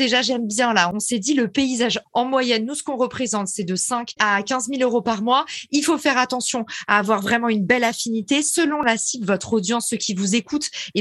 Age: 20-39